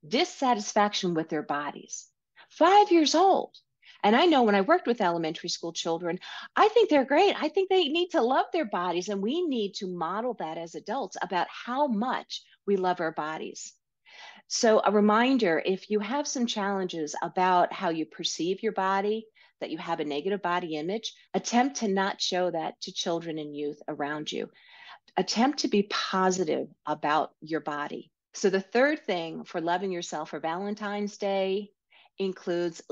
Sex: female